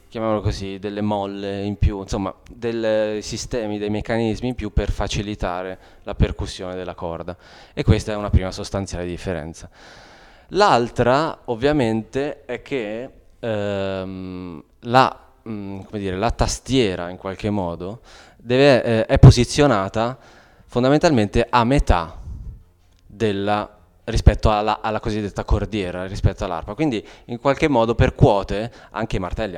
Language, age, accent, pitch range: Italian, 20-39, native, 90-110 Hz